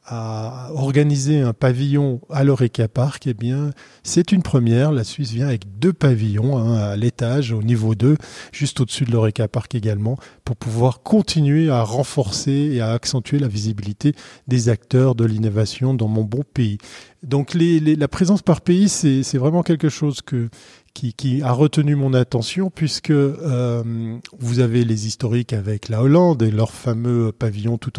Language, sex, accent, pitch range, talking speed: French, male, French, 120-150 Hz, 175 wpm